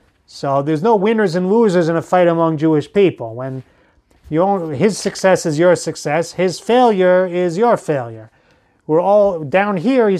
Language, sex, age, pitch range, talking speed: English, male, 30-49, 145-185 Hz, 165 wpm